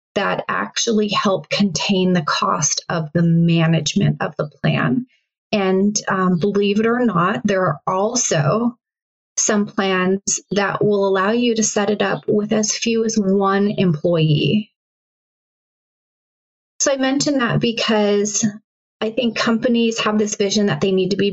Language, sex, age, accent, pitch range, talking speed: English, female, 30-49, American, 180-215 Hz, 150 wpm